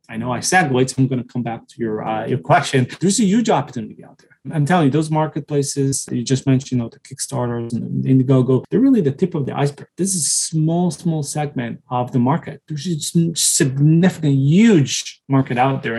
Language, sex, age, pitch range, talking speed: English, male, 20-39, 130-155 Hz, 225 wpm